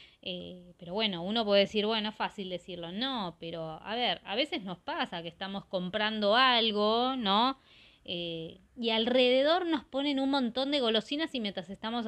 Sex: female